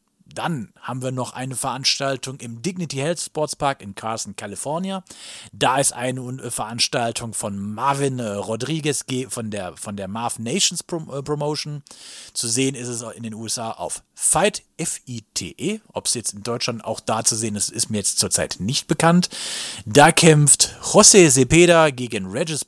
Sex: male